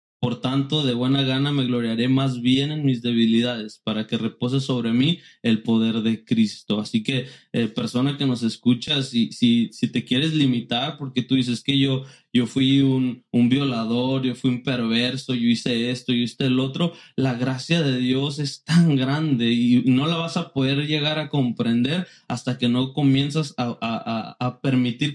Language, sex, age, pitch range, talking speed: Spanish, male, 20-39, 125-145 Hz, 190 wpm